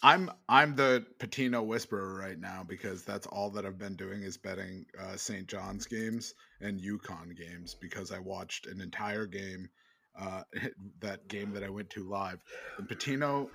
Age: 30-49